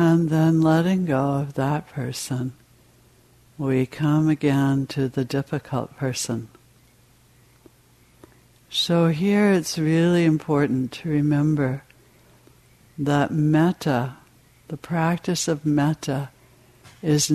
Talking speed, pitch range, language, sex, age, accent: 95 wpm, 130-155 Hz, English, female, 60-79, American